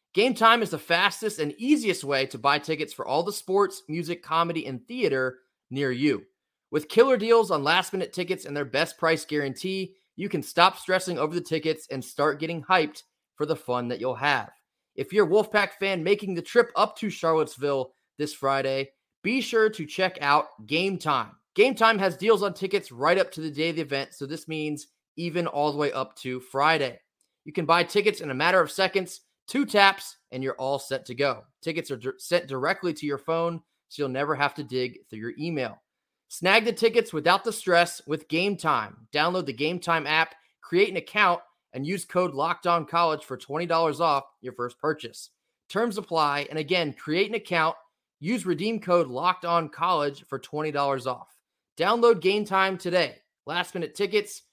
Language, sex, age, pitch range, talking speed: English, male, 20-39, 145-190 Hz, 195 wpm